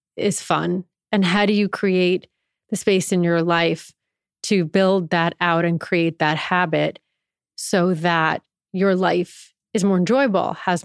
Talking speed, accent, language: 155 wpm, American, English